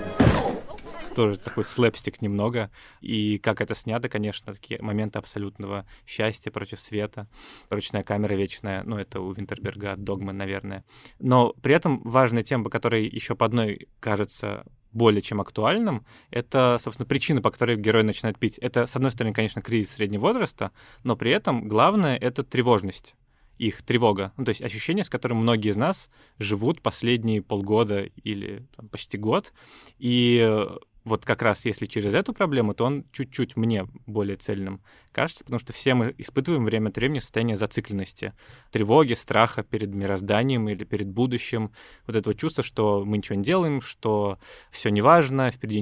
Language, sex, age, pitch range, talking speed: Russian, male, 20-39, 105-125 Hz, 160 wpm